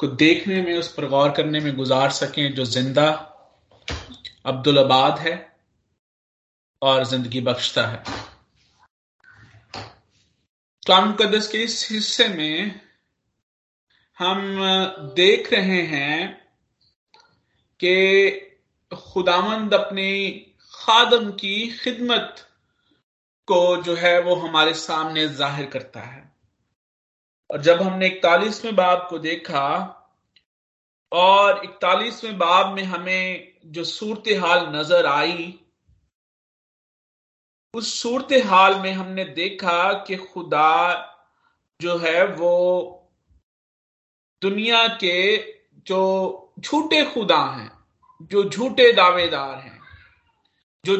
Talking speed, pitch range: 100 wpm, 155-210 Hz